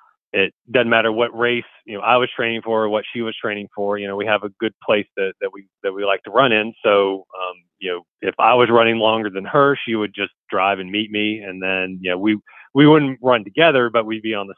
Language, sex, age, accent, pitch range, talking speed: English, male, 40-59, American, 95-115 Hz, 270 wpm